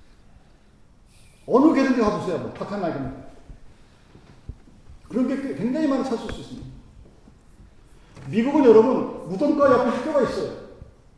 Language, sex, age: Korean, male, 40-59